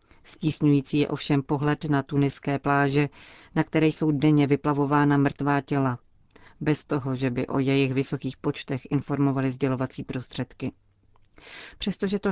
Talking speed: 130 wpm